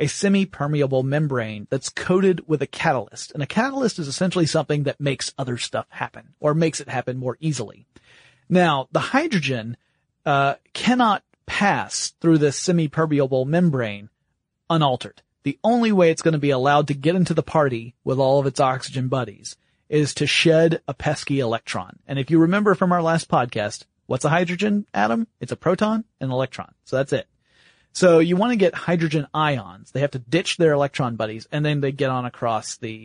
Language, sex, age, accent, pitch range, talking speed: English, male, 30-49, American, 130-165 Hz, 185 wpm